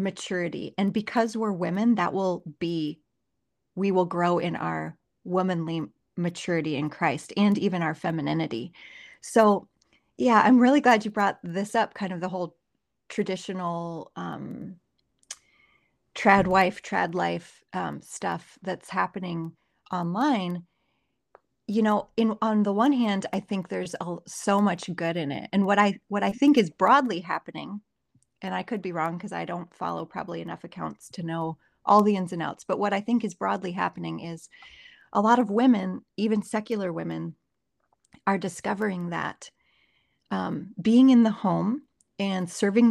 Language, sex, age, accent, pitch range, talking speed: English, female, 30-49, American, 175-220 Hz, 160 wpm